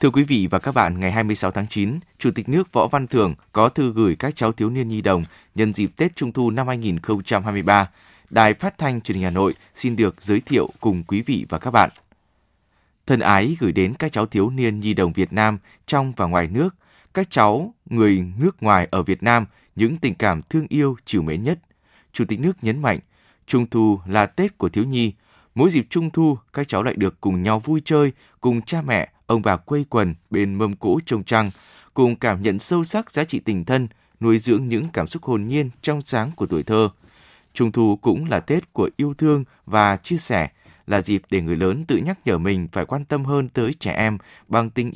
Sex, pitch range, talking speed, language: male, 100-140 Hz, 225 wpm, Vietnamese